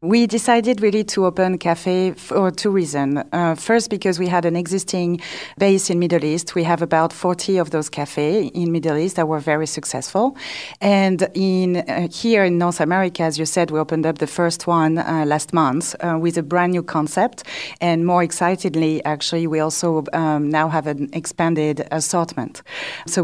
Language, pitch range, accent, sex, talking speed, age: English, 160-190 Hz, French, female, 185 wpm, 40-59